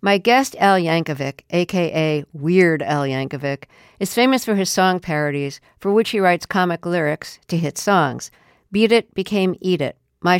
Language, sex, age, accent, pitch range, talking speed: English, female, 50-69, American, 155-210 Hz, 165 wpm